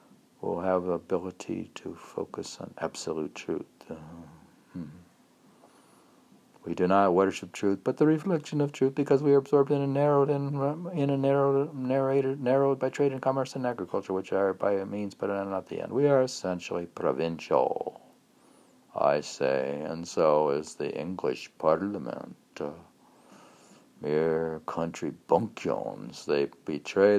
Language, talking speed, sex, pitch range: English, 145 wpm, male, 95-140 Hz